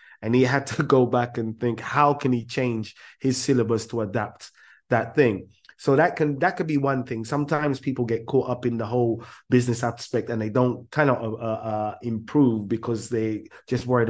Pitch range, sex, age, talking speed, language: 110-130 Hz, male, 20-39, 205 wpm, English